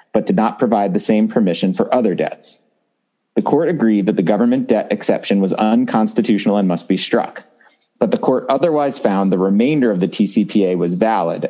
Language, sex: English, male